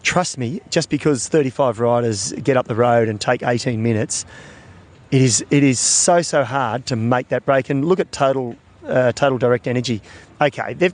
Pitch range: 120-160 Hz